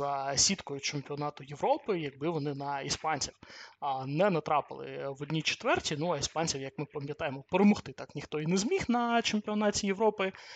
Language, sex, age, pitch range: Ukrainian, male, 20-39, 145-200 Hz